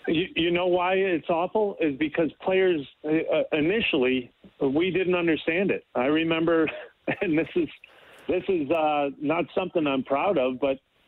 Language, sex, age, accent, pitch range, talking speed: English, male, 40-59, American, 145-175 Hz, 155 wpm